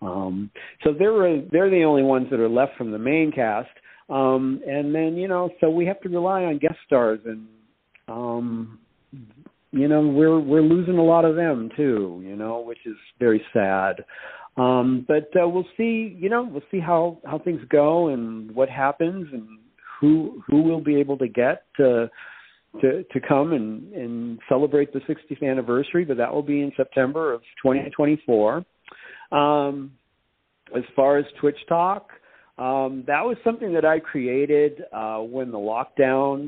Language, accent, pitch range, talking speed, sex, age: English, American, 125-160 Hz, 175 wpm, male, 50-69